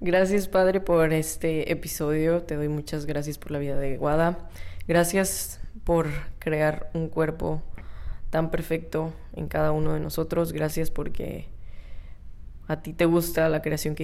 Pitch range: 150-165 Hz